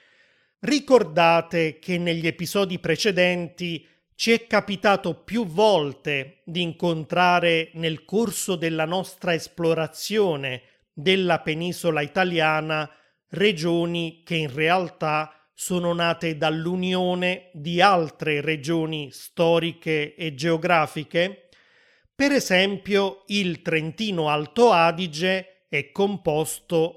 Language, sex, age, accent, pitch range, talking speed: Italian, male, 30-49, native, 155-195 Hz, 90 wpm